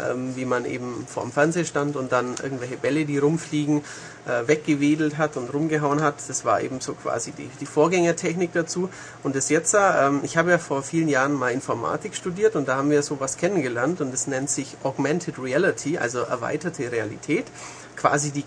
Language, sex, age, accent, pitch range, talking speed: German, female, 40-59, German, 135-175 Hz, 180 wpm